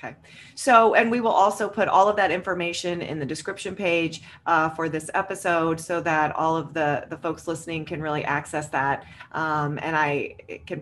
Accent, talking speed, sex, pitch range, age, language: American, 195 wpm, female, 150-180 Hz, 30-49, English